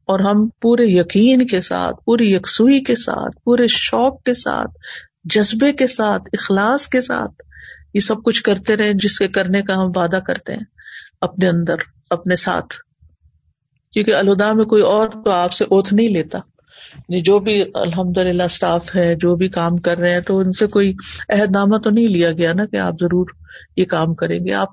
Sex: female